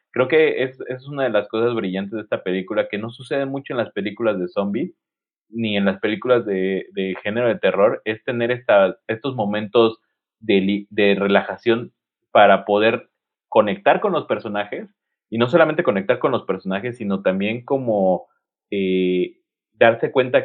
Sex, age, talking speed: male, 30-49, 165 wpm